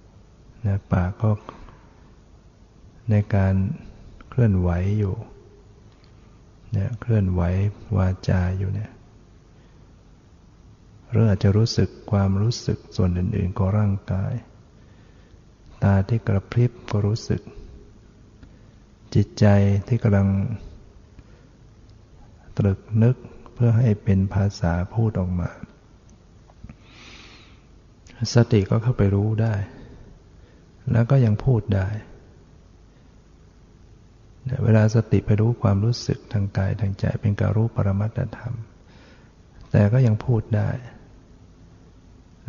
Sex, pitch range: male, 100-115 Hz